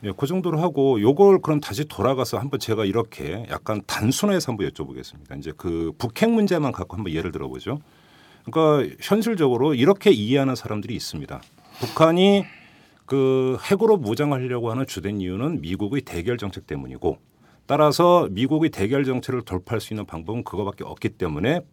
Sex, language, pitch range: male, Korean, 105-155 Hz